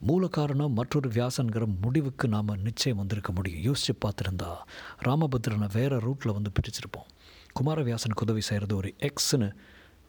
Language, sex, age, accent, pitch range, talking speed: Tamil, male, 50-69, native, 95-125 Hz, 125 wpm